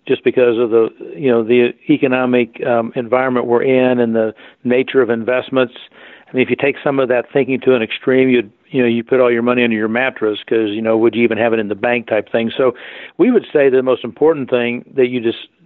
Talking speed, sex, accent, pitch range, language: 245 wpm, male, American, 120-130 Hz, English